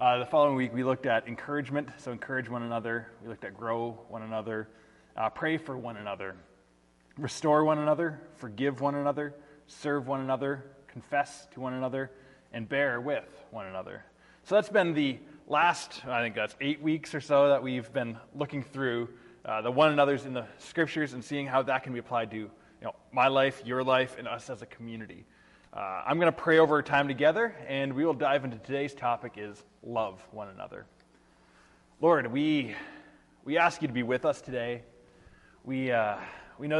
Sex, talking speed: male, 190 wpm